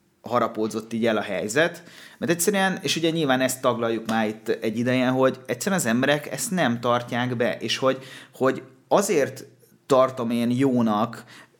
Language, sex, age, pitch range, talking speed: Hungarian, male, 30-49, 115-135 Hz, 160 wpm